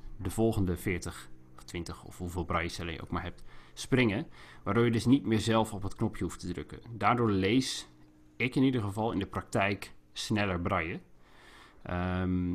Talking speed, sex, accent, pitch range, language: 175 wpm, male, Dutch, 90-110 Hz, Dutch